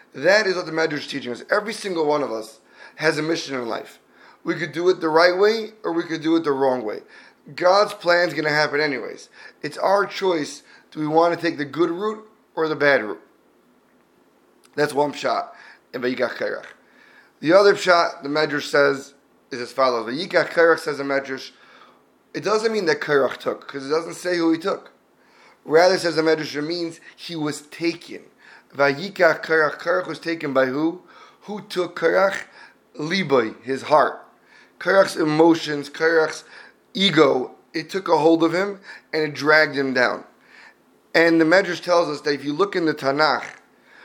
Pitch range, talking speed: 145-175 Hz, 185 wpm